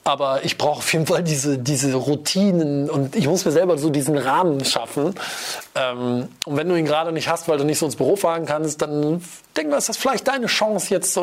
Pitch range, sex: 140-175 Hz, male